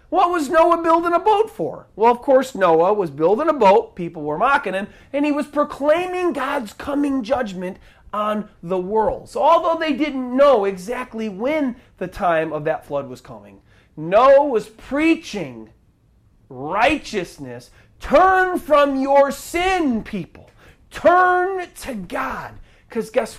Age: 40-59